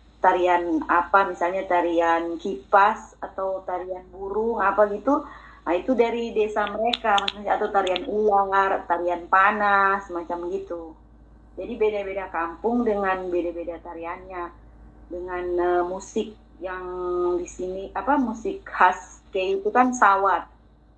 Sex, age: female, 30-49